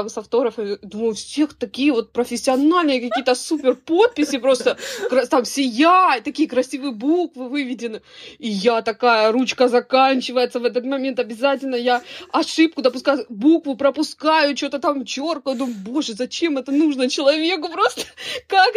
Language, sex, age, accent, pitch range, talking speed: Russian, female, 20-39, native, 235-305 Hz, 135 wpm